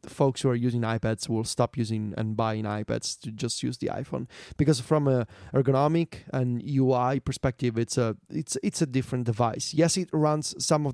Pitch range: 125-155 Hz